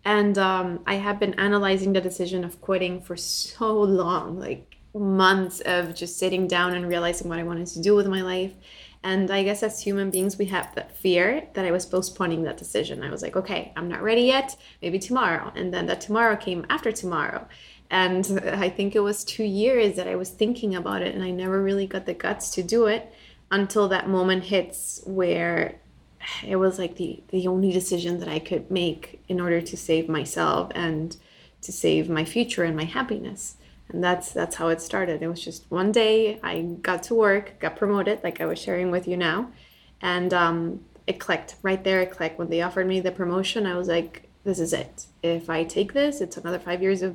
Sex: female